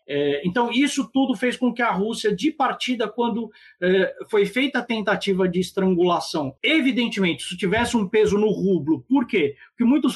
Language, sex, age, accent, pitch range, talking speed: Portuguese, male, 50-69, Brazilian, 185-240 Hz, 175 wpm